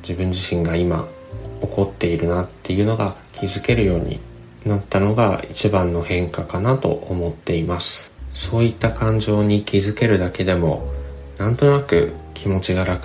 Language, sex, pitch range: Japanese, male, 85-105 Hz